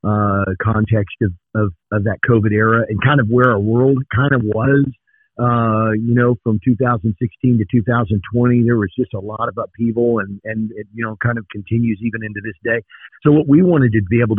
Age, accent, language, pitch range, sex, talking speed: 50-69, American, English, 110-130 Hz, male, 200 wpm